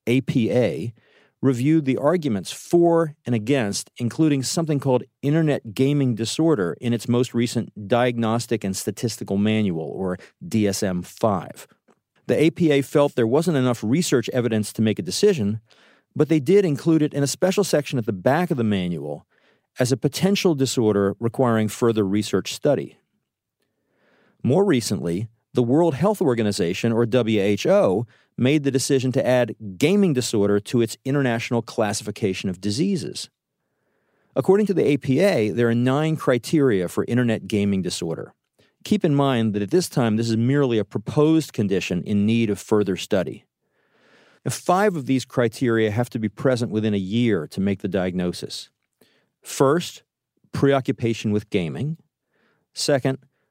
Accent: American